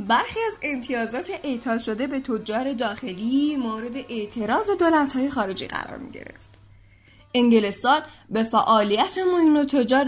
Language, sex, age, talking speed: Persian, female, 10-29, 120 wpm